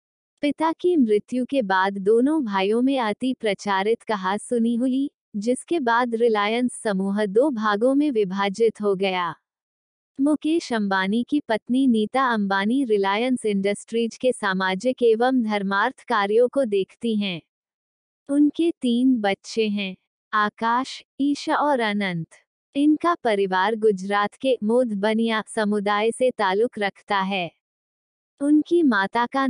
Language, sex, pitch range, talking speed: Hindi, female, 205-260 Hz, 120 wpm